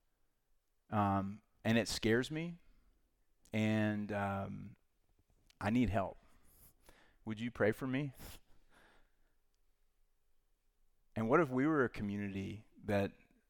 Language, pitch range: English, 100-125 Hz